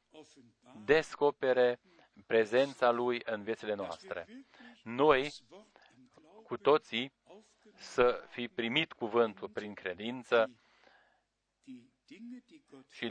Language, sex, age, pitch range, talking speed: Romanian, male, 40-59, 110-145 Hz, 75 wpm